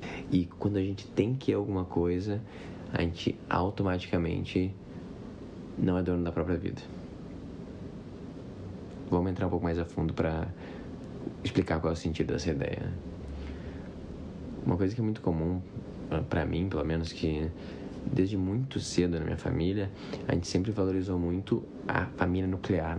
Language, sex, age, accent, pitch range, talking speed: Portuguese, male, 20-39, Brazilian, 85-95 Hz, 155 wpm